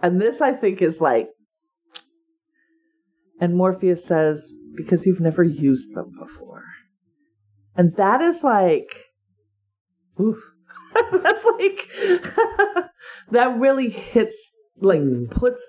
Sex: female